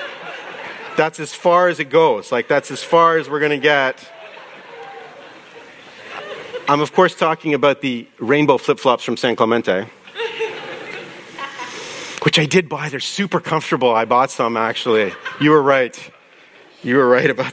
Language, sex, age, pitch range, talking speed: English, male, 40-59, 115-170 Hz, 150 wpm